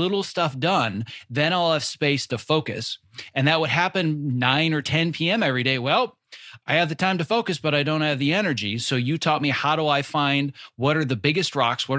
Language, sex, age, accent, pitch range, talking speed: English, male, 30-49, American, 125-155 Hz, 230 wpm